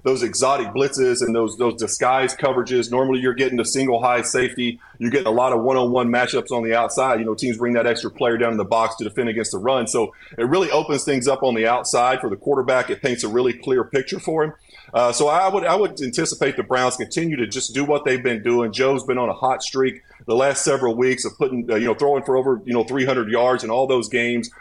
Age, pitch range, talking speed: 30-49, 120-140 Hz, 255 wpm